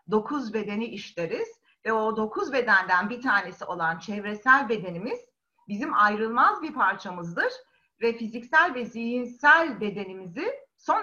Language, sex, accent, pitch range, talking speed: Turkish, female, native, 205-290 Hz, 120 wpm